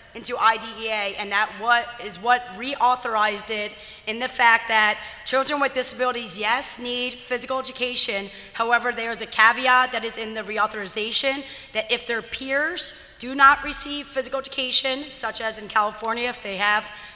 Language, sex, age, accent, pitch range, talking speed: English, female, 30-49, American, 215-260 Hz, 160 wpm